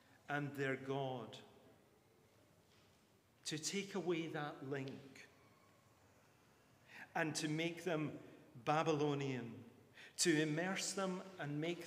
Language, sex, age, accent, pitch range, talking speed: English, male, 40-59, British, 135-165 Hz, 90 wpm